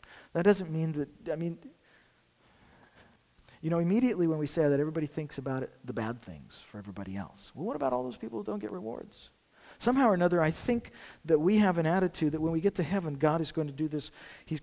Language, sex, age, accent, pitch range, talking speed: English, male, 50-69, American, 120-180 Hz, 230 wpm